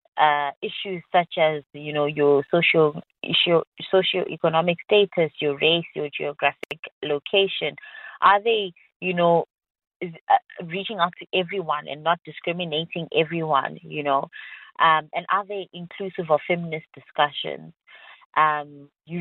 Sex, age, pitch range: female, 20-39, 150-180 Hz